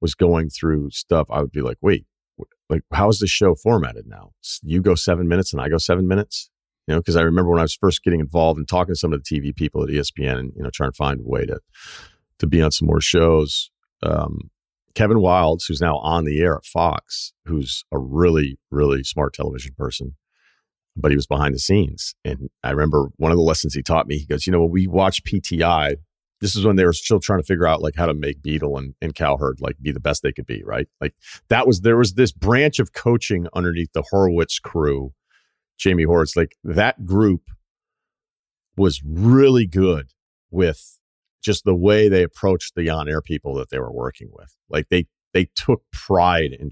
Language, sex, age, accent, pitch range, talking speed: English, male, 40-59, American, 75-95 Hz, 215 wpm